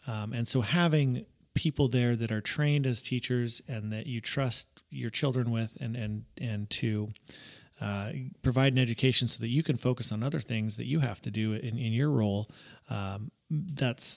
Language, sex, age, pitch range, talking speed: English, male, 30-49, 110-140 Hz, 190 wpm